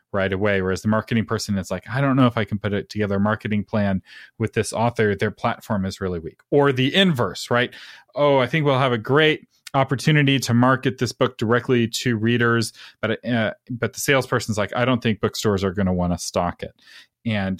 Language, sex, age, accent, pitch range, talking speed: English, male, 30-49, American, 100-125 Hz, 220 wpm